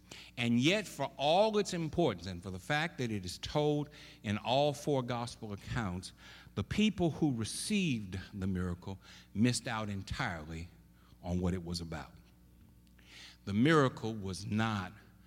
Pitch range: 85-125 Hz